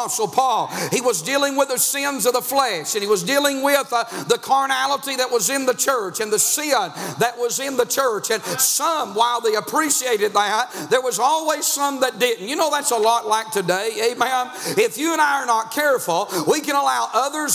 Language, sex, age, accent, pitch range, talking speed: English, male, 50-69, American, 235-290 Hz, 210 wpm